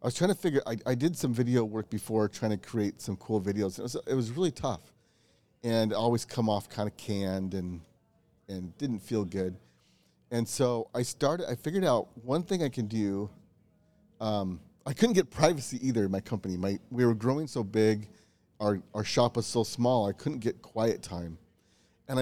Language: English